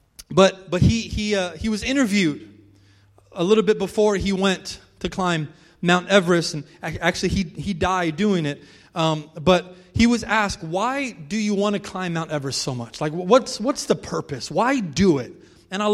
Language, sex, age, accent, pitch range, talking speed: English, male, 30-49, American, 130-195 Hz, 190 wpm